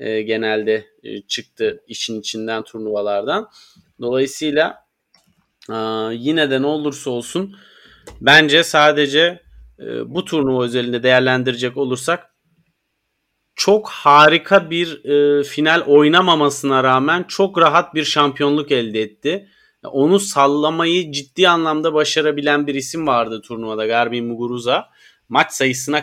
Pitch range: 125-155 Hz